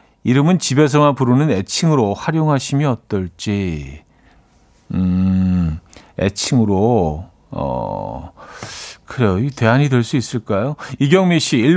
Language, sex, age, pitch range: Korean, male, 50-69, 110-160 Hz